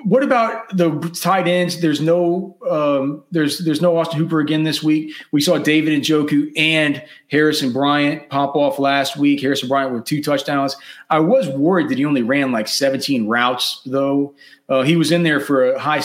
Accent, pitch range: American, 130-160 Hz